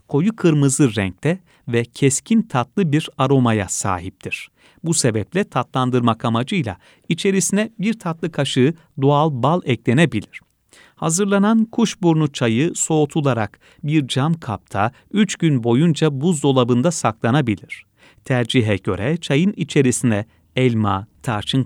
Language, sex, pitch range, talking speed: Turkish, male, 115-165 Hz, 105 wpm